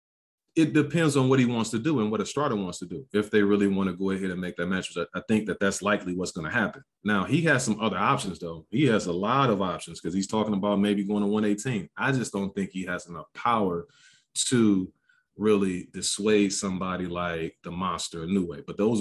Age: 30-49